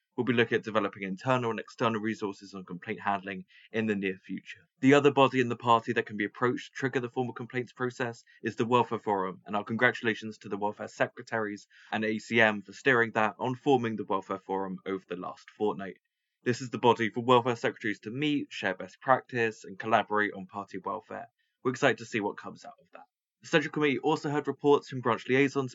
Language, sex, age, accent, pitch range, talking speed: English, male, 20-39, British, 100-125 Hz, 215 wpm